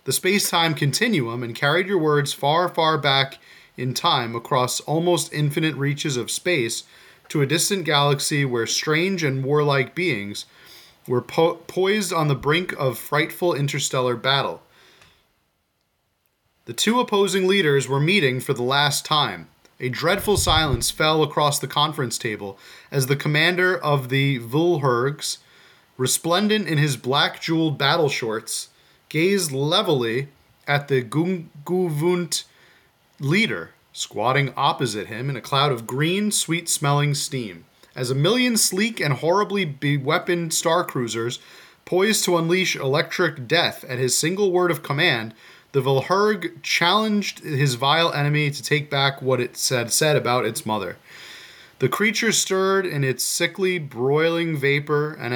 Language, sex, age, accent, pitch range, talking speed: English, male, 30-49, American, 135-175 Hz, 140 wpm